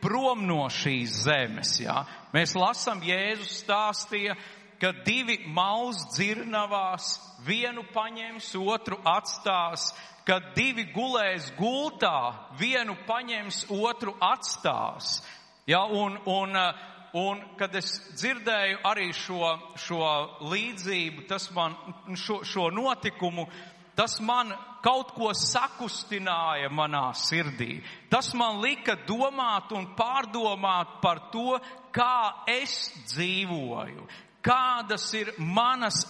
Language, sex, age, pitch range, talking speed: English, male, 50-69, 170-220 Hz, 105 wpm